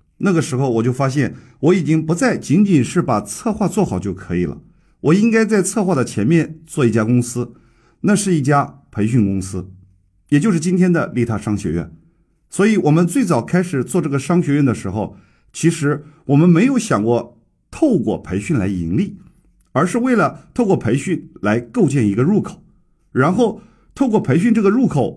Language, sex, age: Chinese, male, 50-69